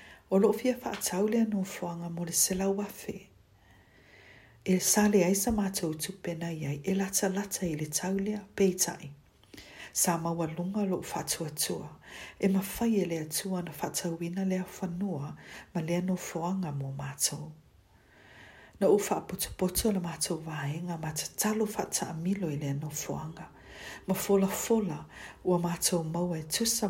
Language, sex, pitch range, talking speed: English, female, 150-195 Hz, 165 wpm